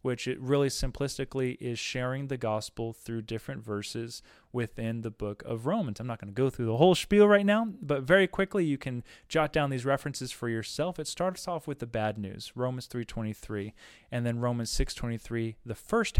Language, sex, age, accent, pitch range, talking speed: English, male, 20-39, American, 115-150 Hz, 195 wpm